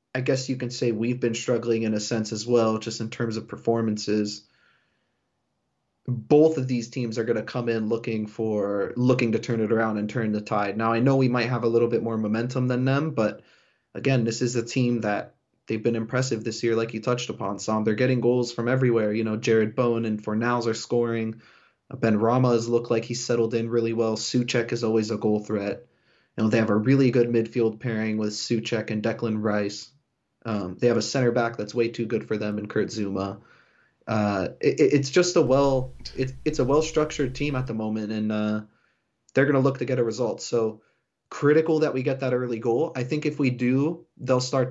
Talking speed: 220 wpm